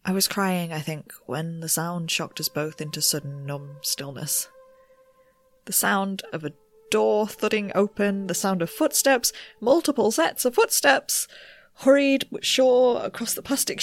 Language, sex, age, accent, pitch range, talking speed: English, female, 20-39, British, 170-250 Hz, 150 wpm